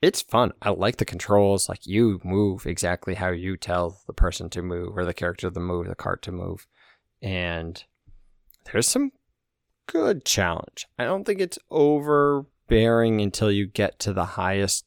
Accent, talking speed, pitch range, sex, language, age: American, 170 wpm, 90-105 Hz, male, English, 20-39